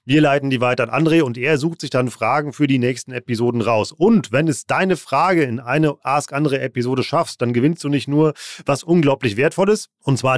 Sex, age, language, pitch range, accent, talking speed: male, 30-49, German, 115-155 Hz, German, 210 wpm